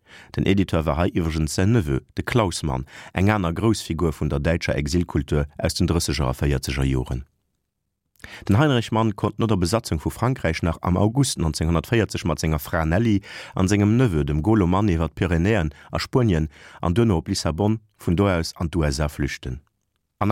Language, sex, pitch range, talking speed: German, male, 75-105 Hz, 175 wpm